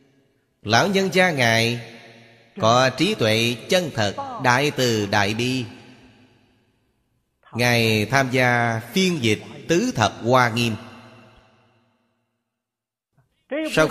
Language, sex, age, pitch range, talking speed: Vietnamese, male, 30-49, 115-130 Hz, 100 wpm